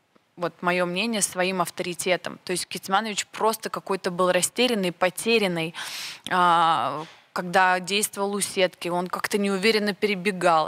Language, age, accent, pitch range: Russian, 20-39, native, 185-220 Hz